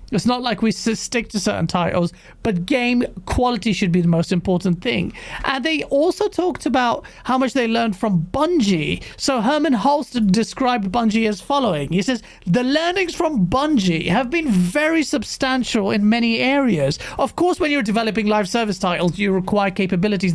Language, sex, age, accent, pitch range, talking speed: English, male, 30-49, British, 200-290 Hz, 175 wpm